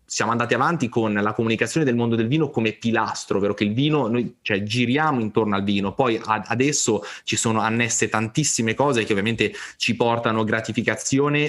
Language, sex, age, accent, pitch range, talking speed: Italian, male, 20-39, native, 105-120 Hz, 185 wpm